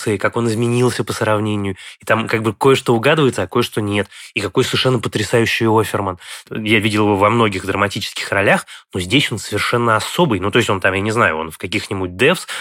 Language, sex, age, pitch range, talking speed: Russian, male, 20-39, 105-125 Hz, 205 wpm